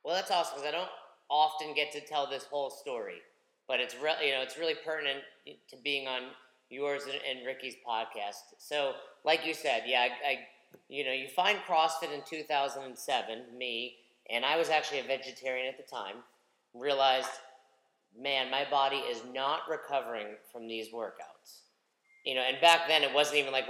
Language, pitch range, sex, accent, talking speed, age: English, 130-150 Hz, male, American, 190 wpm, 40-59